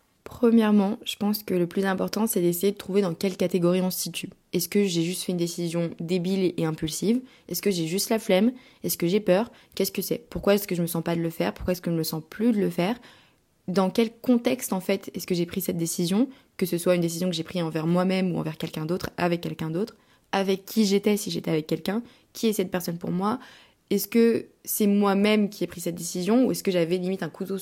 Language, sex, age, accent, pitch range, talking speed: French, female, 20-39, French, 175-210 Hz, 260 wpm